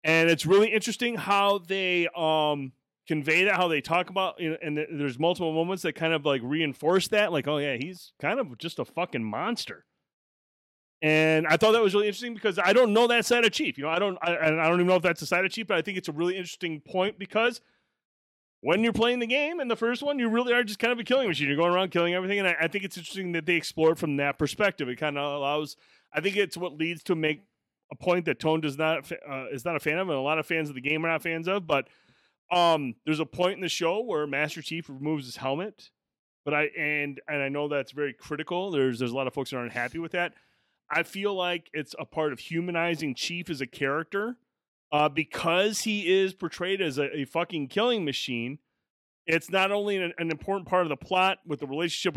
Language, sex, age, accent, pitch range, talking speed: English, male, 30-49, American, 150-190 Hz, 250 wpm